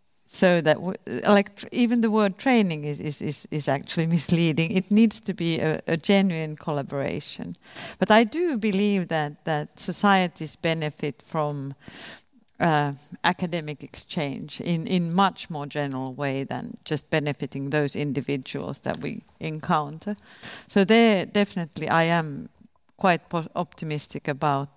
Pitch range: 150-205 Hz